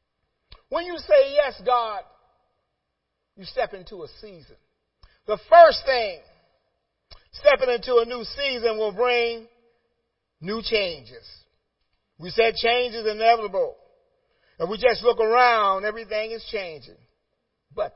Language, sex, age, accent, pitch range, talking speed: English, male, 50-69, American, 190-295 Hz, 120 wpm